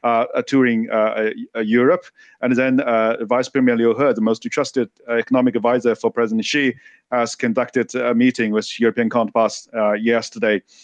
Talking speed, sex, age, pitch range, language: 160 wpm, male, 40-59, 115-135 Hz, English